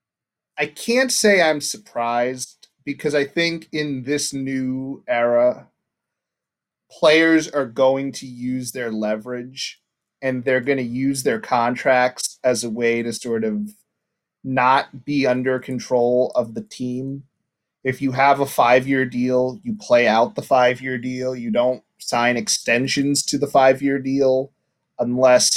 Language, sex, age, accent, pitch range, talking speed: English, male, 30-49, American, 125-155 Hz, 140 wpm